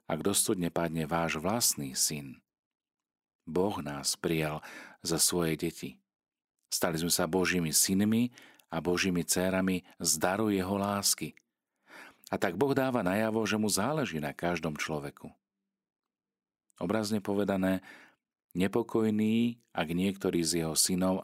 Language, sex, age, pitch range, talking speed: Slovak, male, 40-59, 80-100 Hz, 120 wpm